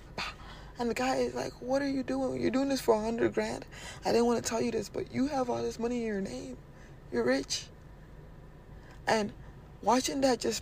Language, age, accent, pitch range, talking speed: English, 20-39, American, 210-265 Hz, 215 wpm